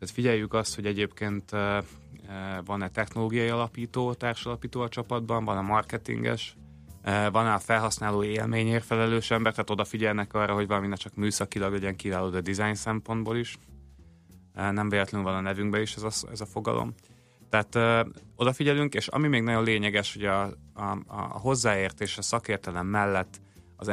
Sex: male